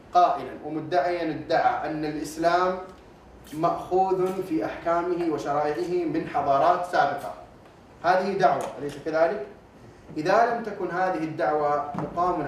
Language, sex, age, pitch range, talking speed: Arabic, male, 30-49, 155-195 Hz, 105 wpm